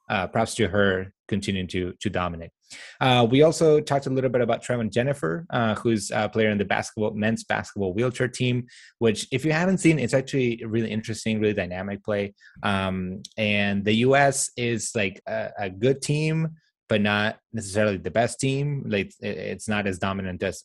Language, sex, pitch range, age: English, male, 100-125 Hz, 20-39